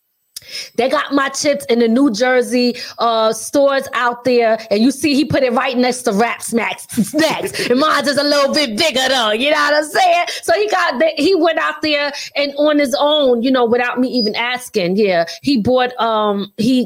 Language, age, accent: English, 20-39, American